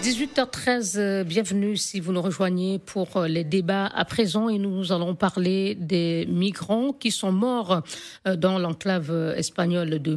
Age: 50-69